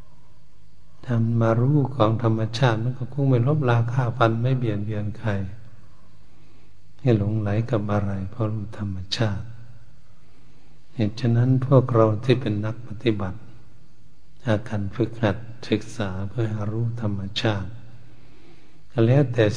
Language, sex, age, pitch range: Thai, male, 60-79, 100-115 Hz